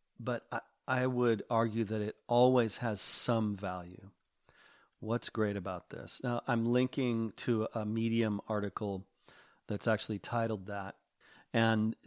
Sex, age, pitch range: male, 40-59, 105-120 Hz